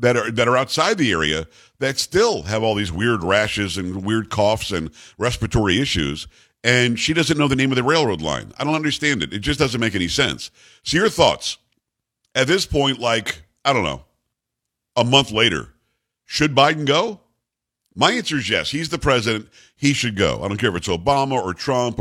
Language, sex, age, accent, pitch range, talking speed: English, male, 50-69, American, 110-145 Hz, 200 wpm